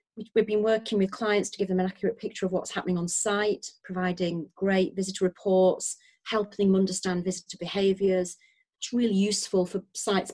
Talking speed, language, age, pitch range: 175 wpm, English, 30-49, 190-230 Hz